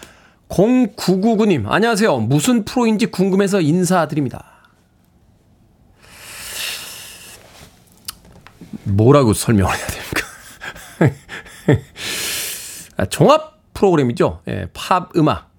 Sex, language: male, Korean